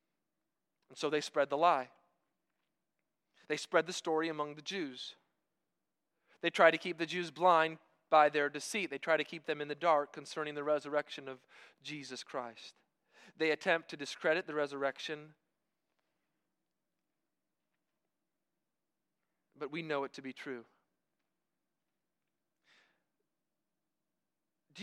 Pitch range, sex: 160-220 Hz, male